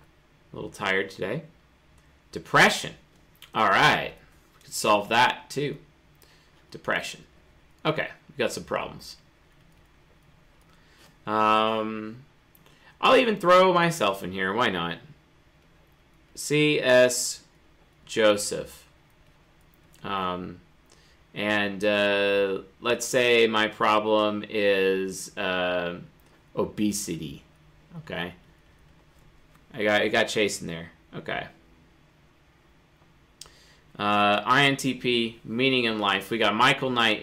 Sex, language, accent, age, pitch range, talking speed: male, English, American, 30-49, 90-120 Hz, 90 wpm